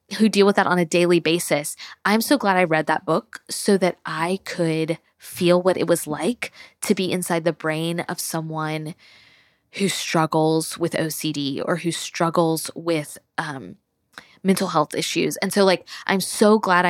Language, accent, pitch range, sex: English, American, 165-215 Hz, female